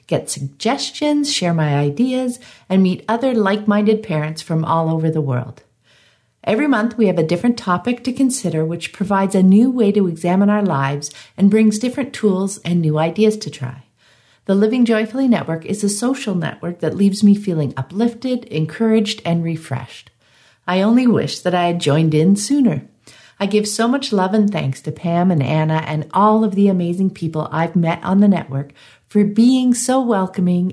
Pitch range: 155-215 Hz